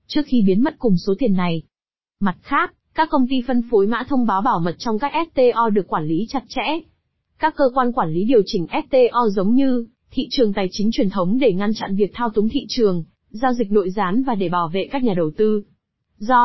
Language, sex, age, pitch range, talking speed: Vietnamese, female, 20-39, 200-255 Hz, 235 wpm